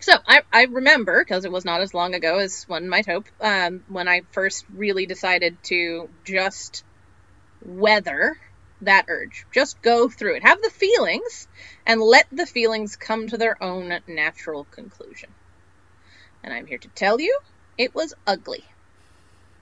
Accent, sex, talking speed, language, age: American, female, 160 wpm, English, 30-49